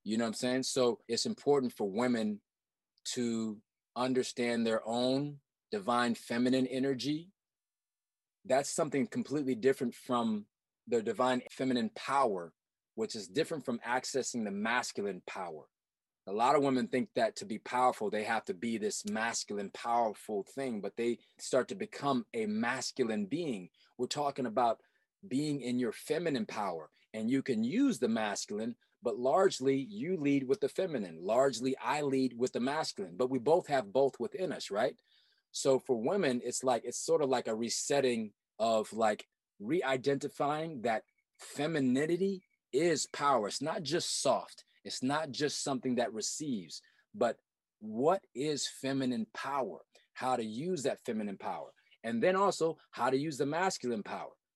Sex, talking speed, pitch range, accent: male, 155 wpm, 120-150 Hz, American